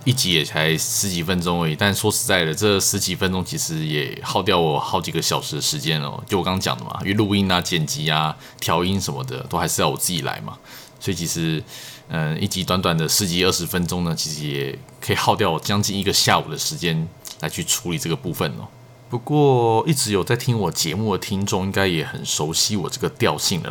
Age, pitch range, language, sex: 20-39, 90-125 Hz, Chinese, male